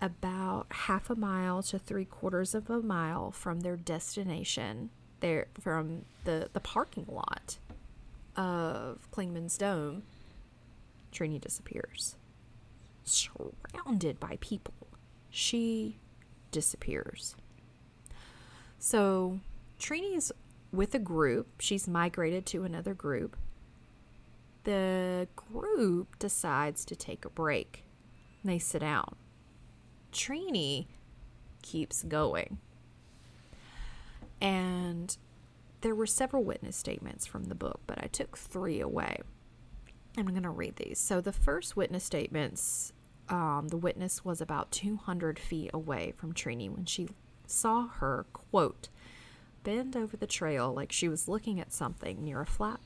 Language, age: English, 30-49